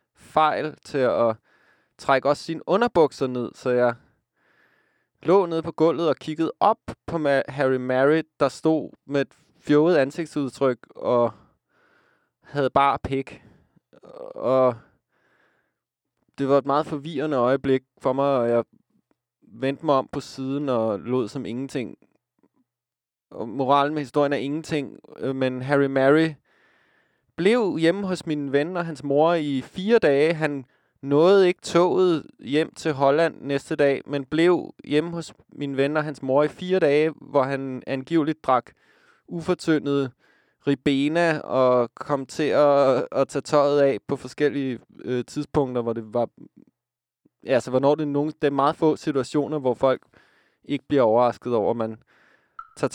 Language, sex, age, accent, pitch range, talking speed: Danish, male, 20-39, native, 130-155 Hz, 145 wpm